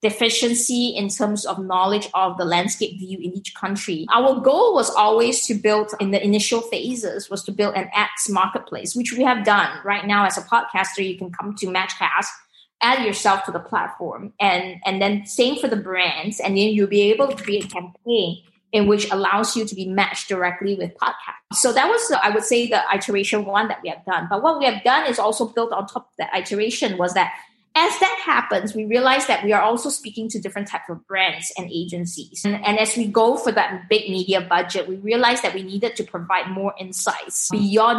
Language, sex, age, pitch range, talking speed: English, female, 20-39, 190-230 Hz, 220 wpm